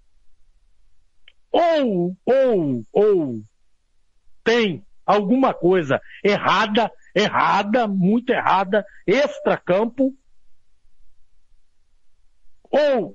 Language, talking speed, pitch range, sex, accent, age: Portuguese, 55 wpm, 200-335 Hz, male, Brazilian, 60-79